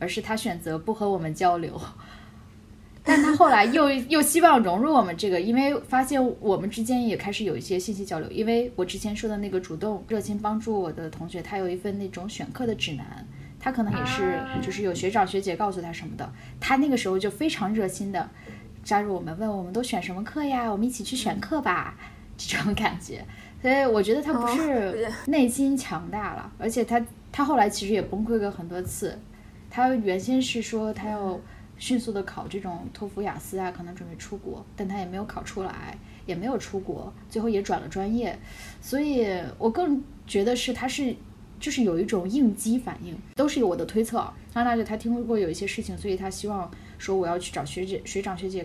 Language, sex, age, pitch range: Chinese, female, 10-29, 185-235 Hz